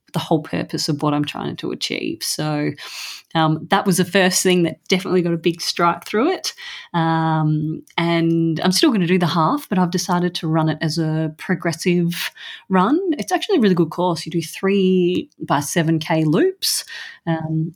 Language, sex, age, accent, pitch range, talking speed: English, female, 30-49, Australian, 160-190 Hz, 190 wpm